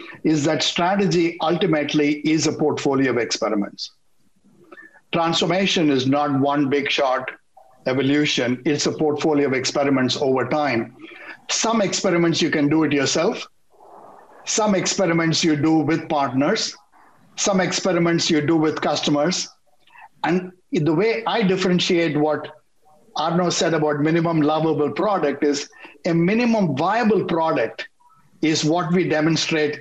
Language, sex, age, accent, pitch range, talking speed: English, male, 60-79, Indian, 145-180 Hz, 125 wpm